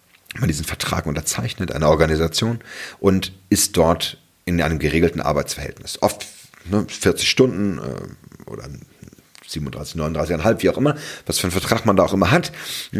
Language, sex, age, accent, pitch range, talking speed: German, male, 40-59, German, 80-95 Hz, 150 wpm